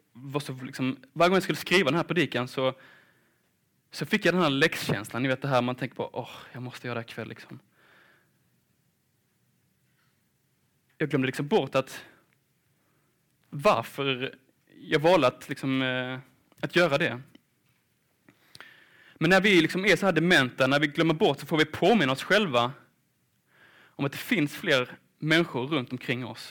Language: Swedish